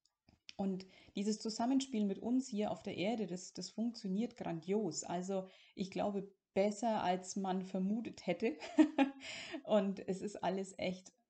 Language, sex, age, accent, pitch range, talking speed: German, female, 30-49, German, 180-210 Hz, 140 wpm